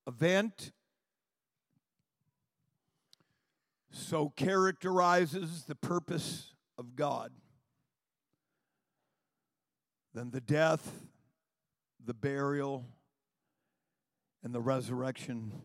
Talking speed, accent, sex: 60 wpm, American, male